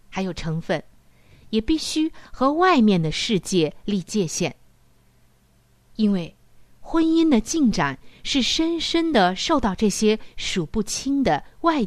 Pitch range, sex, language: 170-260 Hz, female, Chinese